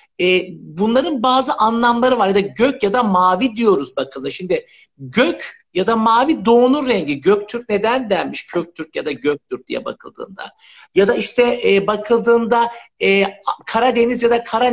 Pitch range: 195-245 Hz